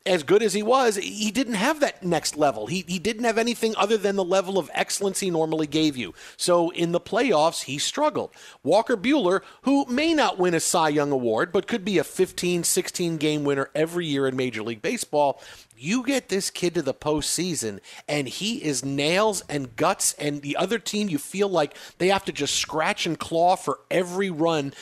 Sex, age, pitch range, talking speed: male, 40-59, 145-190 Hz, 205 wpm